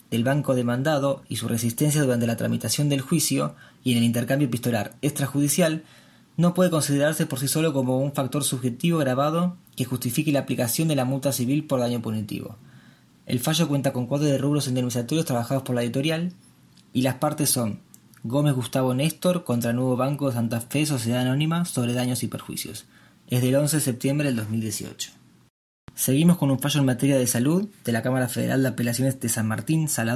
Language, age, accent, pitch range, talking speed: Spanish, 20-39, Argentinian, 120-150 Hz, 190 wpm